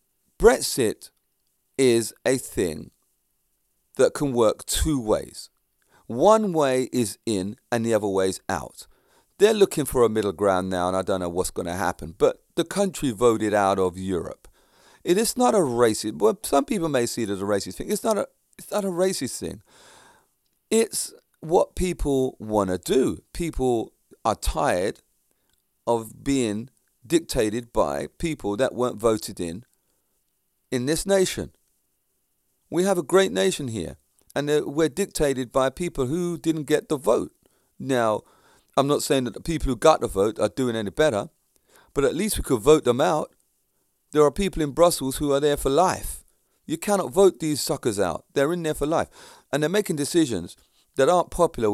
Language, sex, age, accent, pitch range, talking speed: English, male, 40-59, British, 110-170 Hz, 175 wpm